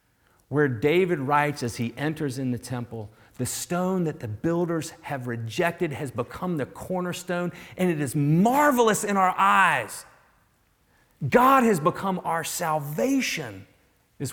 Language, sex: English, male